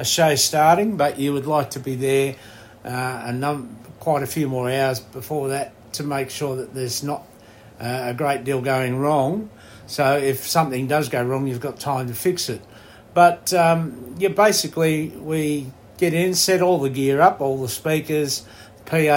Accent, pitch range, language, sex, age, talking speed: Australian, 130-150 Hz, English, male, 60-79, 180 wpm